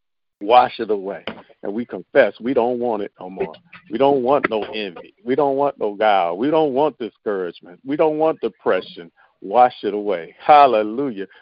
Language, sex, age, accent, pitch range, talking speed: English, male, 50-69, American, 145-205 Hz, 180 wpm